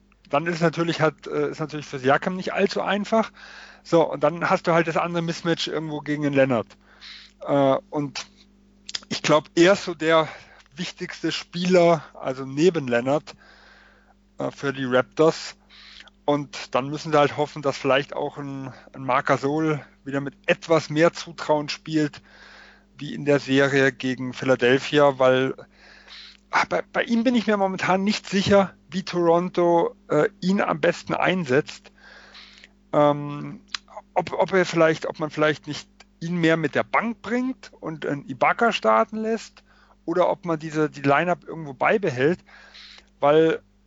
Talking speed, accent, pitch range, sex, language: 150 wpm, German, 140-185 Hz, male, German